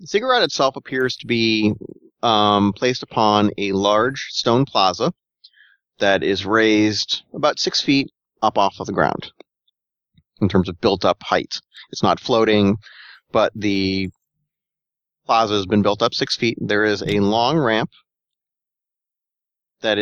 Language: English